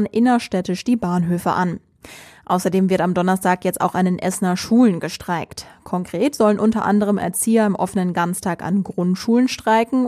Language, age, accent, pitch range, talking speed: German, 20-39, German, 175-210 Hz, 155 wpm